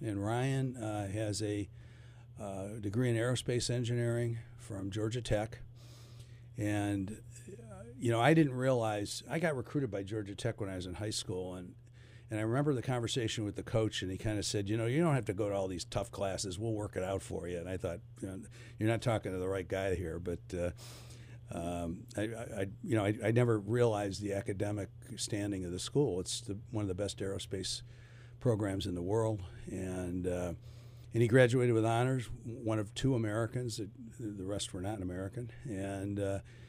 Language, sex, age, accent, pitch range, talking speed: English, male, 60-79, American, 100-120 Hz, 200 wpm